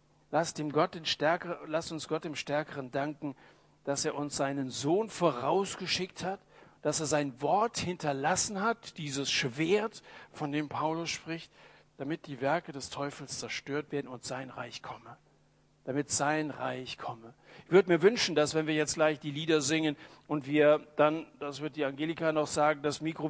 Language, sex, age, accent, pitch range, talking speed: German, male, 60-79, German, 145-180 Hz, 175 wpm